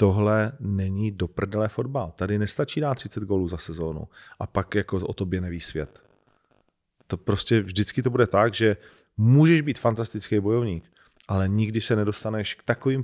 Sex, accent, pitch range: male, native, 95-115 Hz